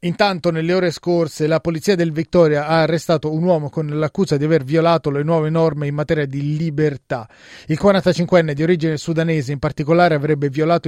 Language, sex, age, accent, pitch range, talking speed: Italian, male, 30-49, native, 150-185 Hz, 180 wpm